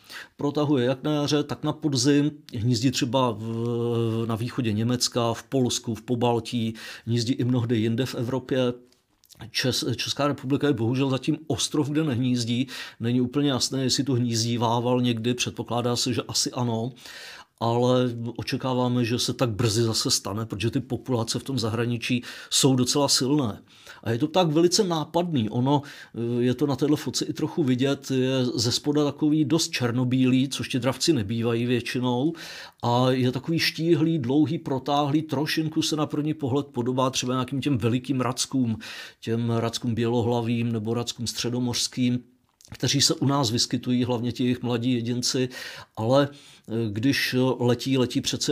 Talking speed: 155 wpm